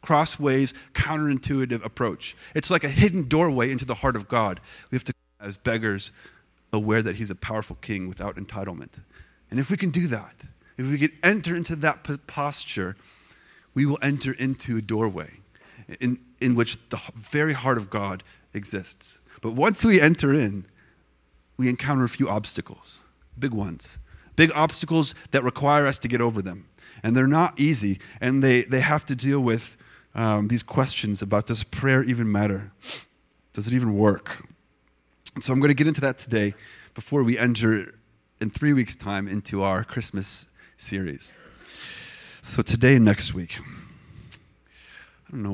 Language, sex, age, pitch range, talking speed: English, male, 30-49, 100-135 Hz, 165 wpm